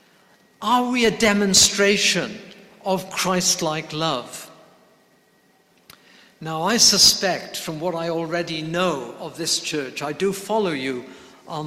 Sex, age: male, 60-79